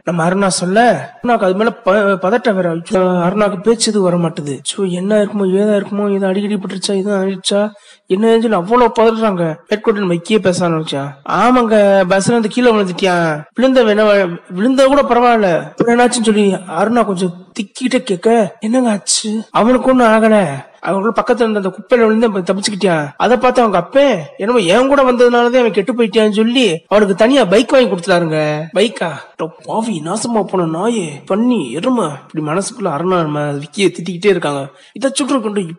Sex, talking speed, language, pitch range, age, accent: male, 70 wpm, Tamil, 180-230 Hz, 20-39, native